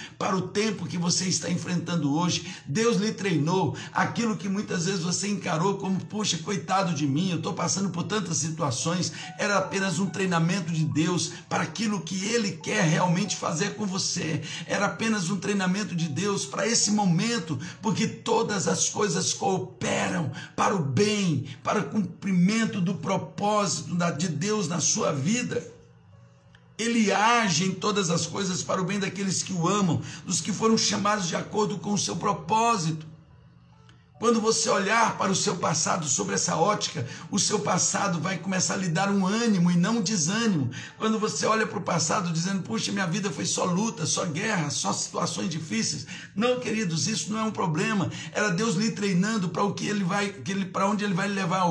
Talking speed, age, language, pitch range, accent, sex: 180 wpm, 60-79, Portuguese, 170-210 Hz, Brazilian, male